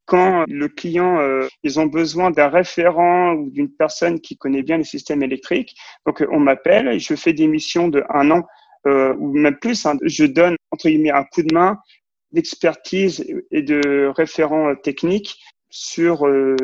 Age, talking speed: 40-59, 175 wpm